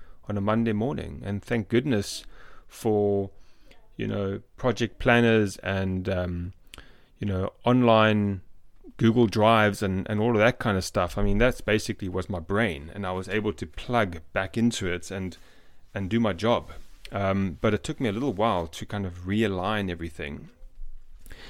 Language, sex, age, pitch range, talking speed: English, male, 30-49, 95-115 Hz, 170 wpm